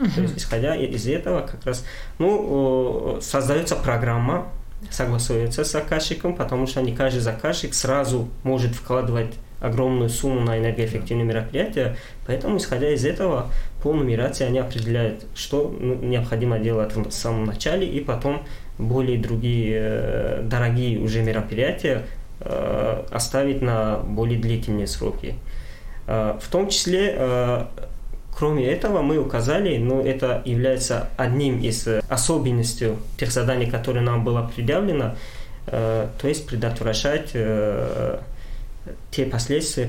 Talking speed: 115 wpm